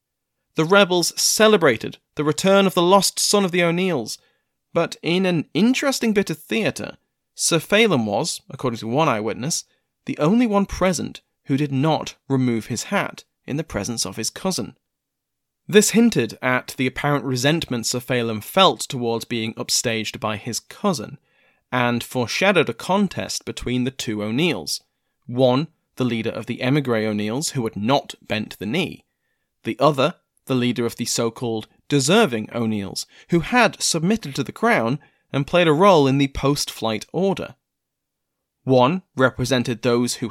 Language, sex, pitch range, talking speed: English, male, 120-175 Hz, 155 wpm